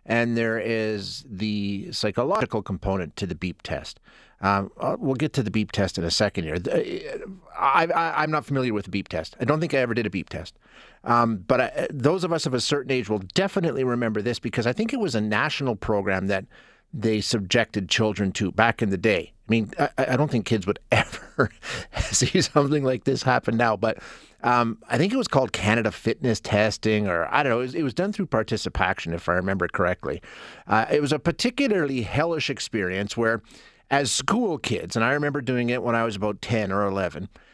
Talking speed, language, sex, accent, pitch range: 205 wpm, English, male, American, 105-140 Hz